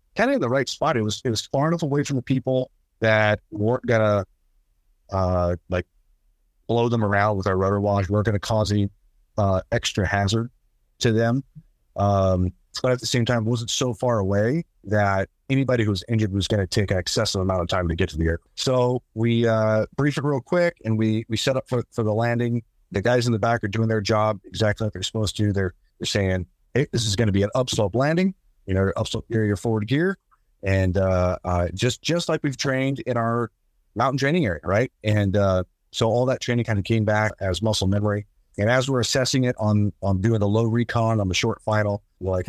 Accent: American